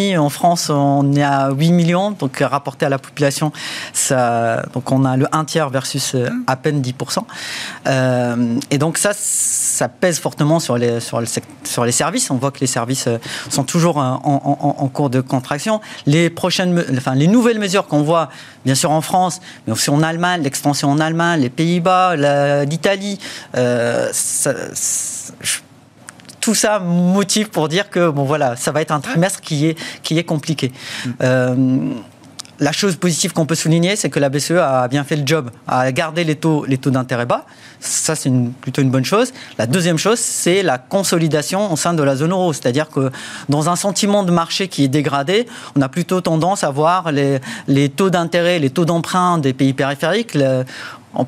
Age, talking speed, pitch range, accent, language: 40-59, 185 wpm, 135-175 Hz, French, French